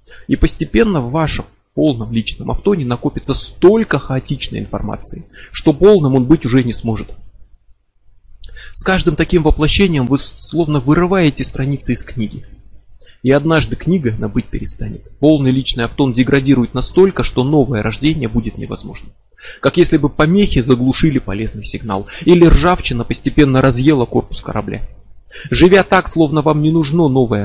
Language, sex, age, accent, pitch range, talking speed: Russian, male, 20-39, native, 110-155 Hz, 140 wpm